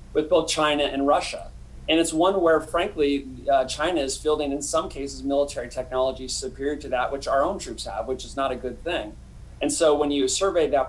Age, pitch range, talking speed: 30-49, 130-155 Hz, 215 wpm